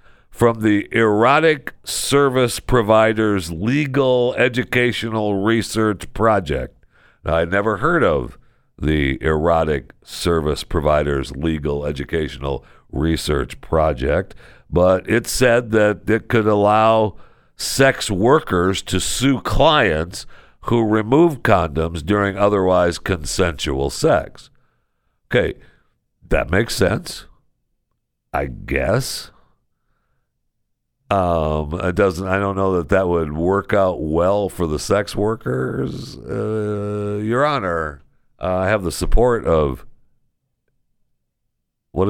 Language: English